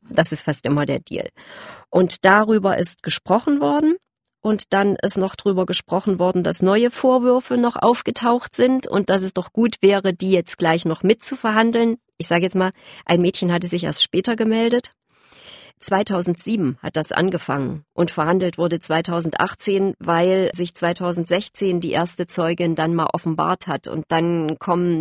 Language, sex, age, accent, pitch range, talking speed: German, female, 40-59, German, 165-195 Hz, 160 wpm